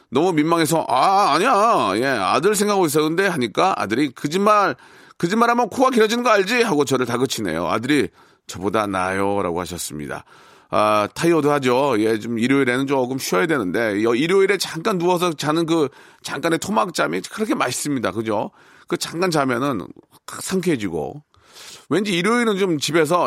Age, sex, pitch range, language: 40-59, male, 130-190 Hz, Korean